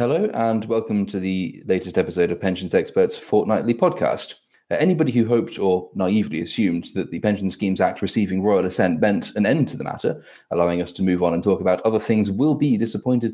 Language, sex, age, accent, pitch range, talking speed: English, male, 20-39, British, 90-115 Hz, 205 wpm